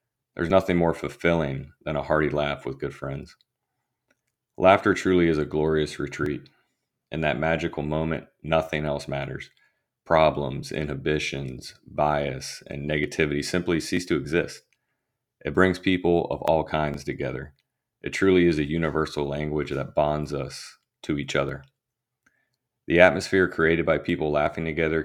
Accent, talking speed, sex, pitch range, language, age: American, 140 wpm, male, 75-85 Hz, English, 30-49